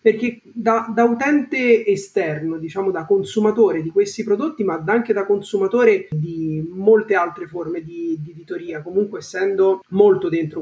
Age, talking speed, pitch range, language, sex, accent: 30-49, 145 wpm, 170-230 Hz, Italian, male, native